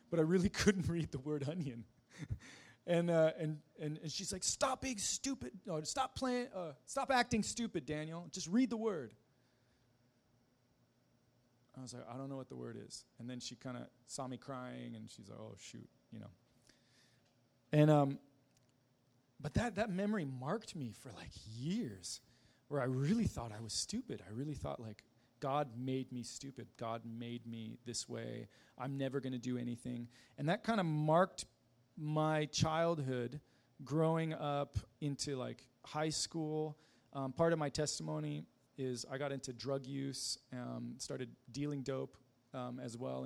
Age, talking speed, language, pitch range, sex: 30-49, 170 wpm, English, 120-155 Hz, male